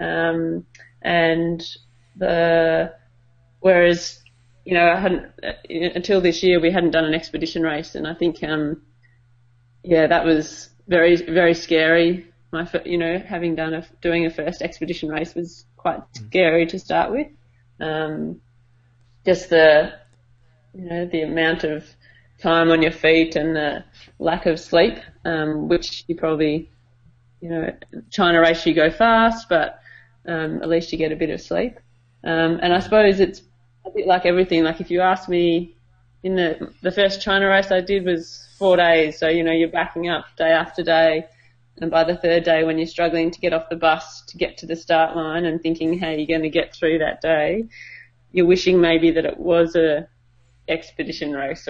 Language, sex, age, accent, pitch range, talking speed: English, female, 30-49, Australian, 150-170 Hz, 180 wpm